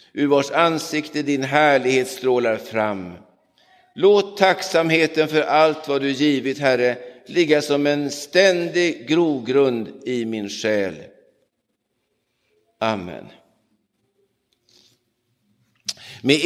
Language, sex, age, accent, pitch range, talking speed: Swedish, male, 60-79, native, 130-185 Hz, 90 wpm